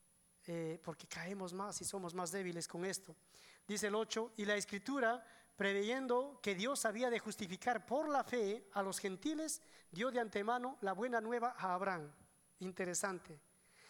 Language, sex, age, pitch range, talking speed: English, male, 40-59, 185-245 Hz, 155 wpm